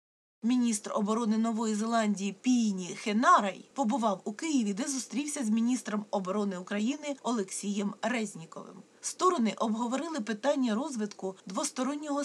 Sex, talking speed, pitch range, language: female, 110 wpm, 210-265 Hz, Ukrainian